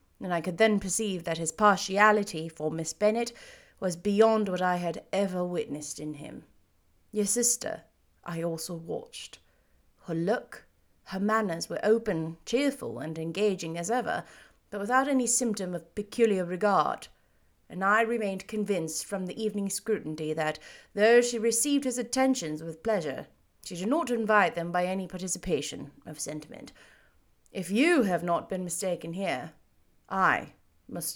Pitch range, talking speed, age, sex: 165-215 Hz, 150 wpm, 30-49, female